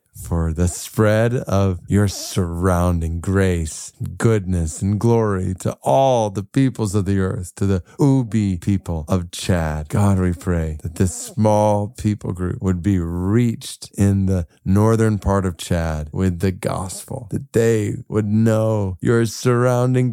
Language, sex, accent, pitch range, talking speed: English, male, American, 95-125 Hz, 145 wpm